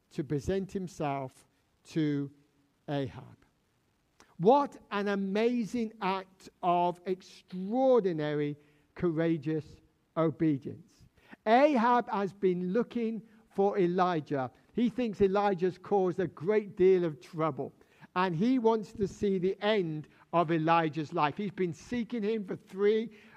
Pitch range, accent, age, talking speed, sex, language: 160-215 Hz, British, 60-79, 115 wpm, male, English